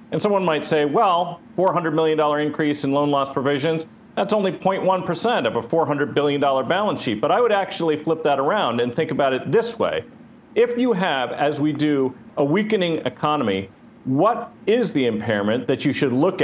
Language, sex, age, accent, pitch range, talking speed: English, male, 40-59, American, 125-160 Hz, 185 wpm